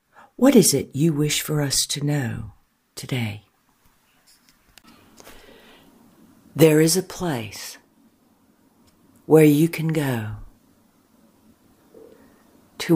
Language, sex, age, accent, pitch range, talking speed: English, female, 60-79, American, 135-160 Hz, 90 wpm